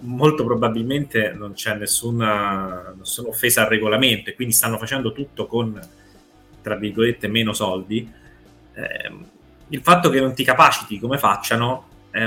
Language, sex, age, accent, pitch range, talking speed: Italian, male, 20-39, native, 110-140 Hz, 140 wpm